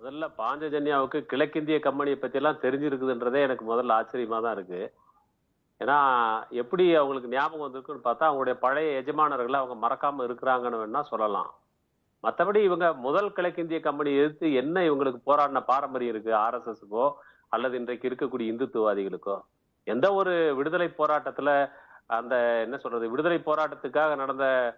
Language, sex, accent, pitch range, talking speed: Tamil, male, native, 130-165 Hz, 130 wpm